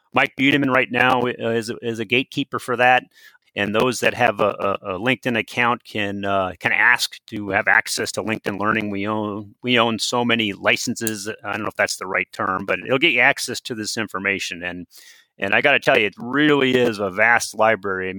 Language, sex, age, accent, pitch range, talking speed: English, male, 30-49, American, 105-130 Hz, 220 wpm